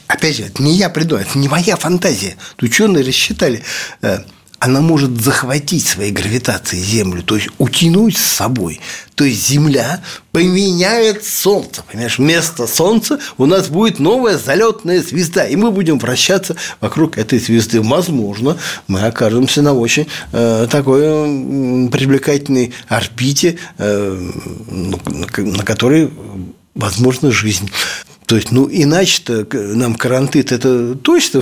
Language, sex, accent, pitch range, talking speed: Russian, male, native, 115-160 Hz, 130 wpm